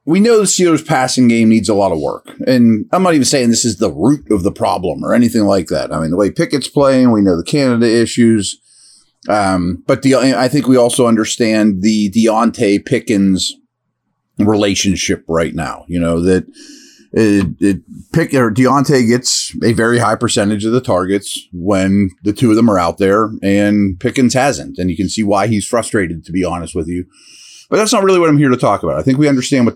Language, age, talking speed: English, 30-49, 210 wpm